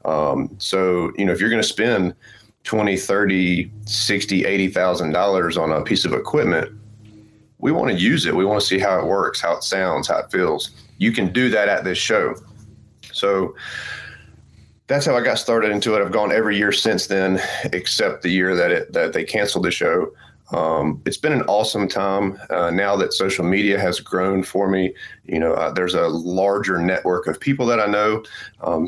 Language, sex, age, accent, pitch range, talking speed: English, male, 30-49, American, 95-105 Hz, 195 wpm